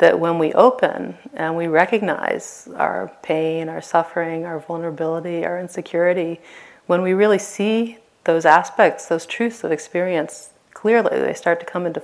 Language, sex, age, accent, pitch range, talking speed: English, female, 30-49, American, 160-185 Hz, 155 wpm